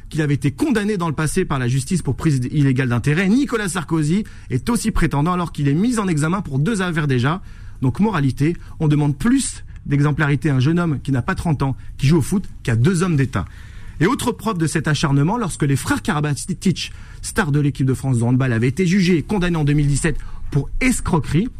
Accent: French